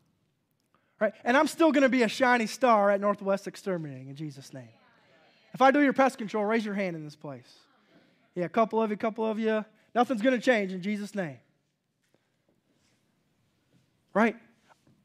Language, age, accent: English, 20-39, American